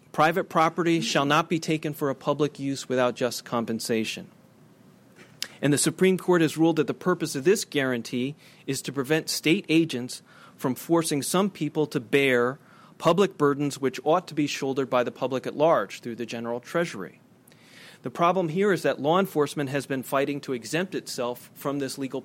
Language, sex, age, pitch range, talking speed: English, male, 30-49, 125-155 Hz, 185 wpm